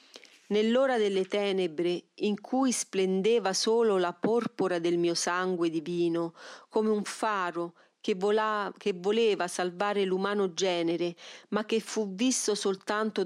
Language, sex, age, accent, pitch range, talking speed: Italian, female, 40-59, native, 180-225 Hz, 120 wpm